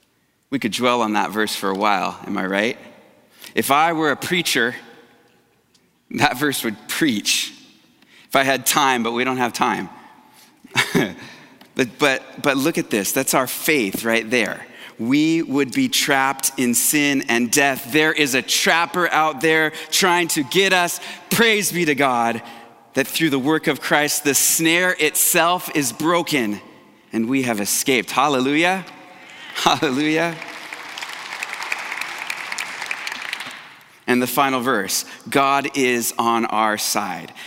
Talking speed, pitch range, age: 145 wpm, 115-155 Hz, 30-49